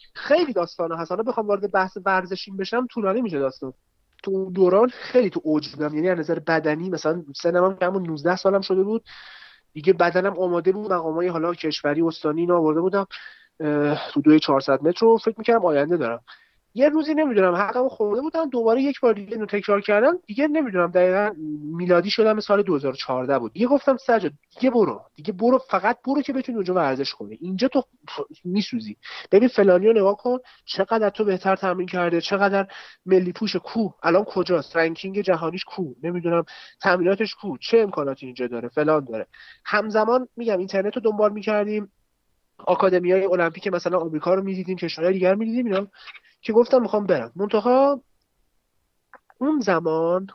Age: 30-49